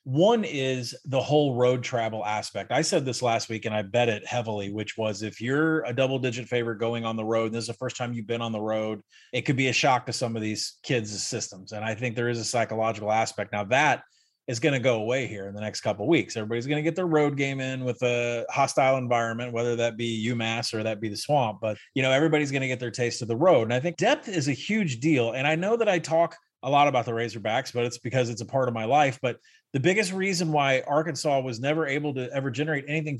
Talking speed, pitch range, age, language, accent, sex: 265 wpm, 115-150 Hz, 30-49, English, American, male